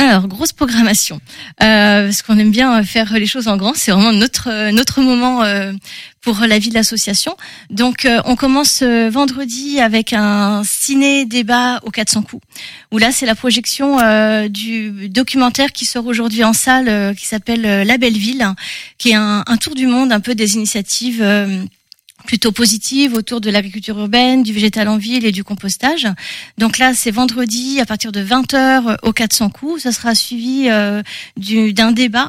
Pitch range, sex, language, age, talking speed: 210-245 Hz, female, French, 30-49, 180 wpm